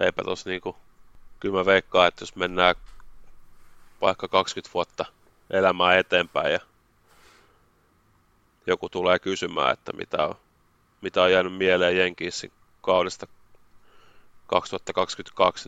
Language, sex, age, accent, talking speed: Finnish, male, 30-49, native, 100 wpm